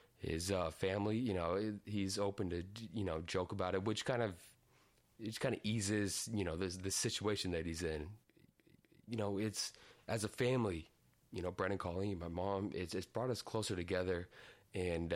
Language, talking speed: English, 185 wpm